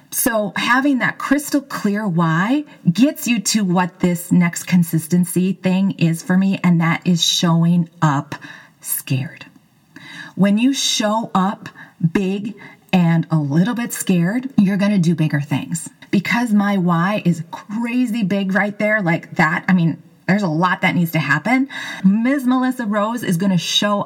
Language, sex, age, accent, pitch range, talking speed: English, female, 30-49, American, 160-205 Hz, 160 wpm